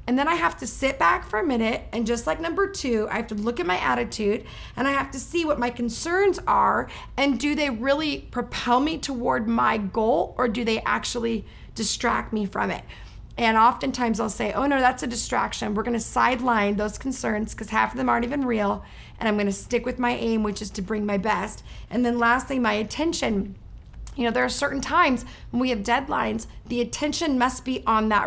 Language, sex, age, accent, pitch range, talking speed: English, female, 30-49, American, 215-260 Hz, 220 wpm